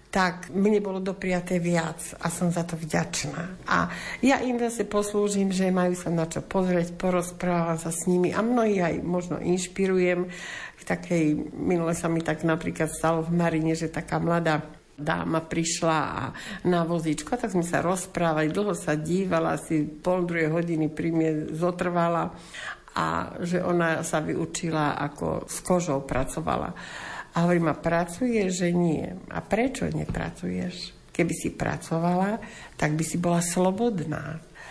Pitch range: 160-180 Hz